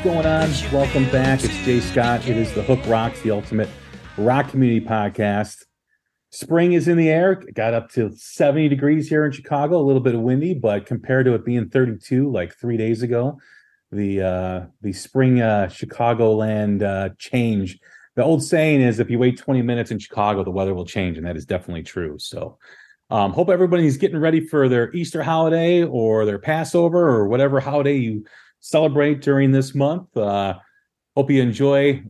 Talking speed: 185 wpm